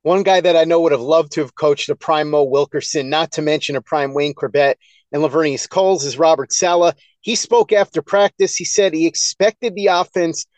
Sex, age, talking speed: male, 30-49, 210 wpm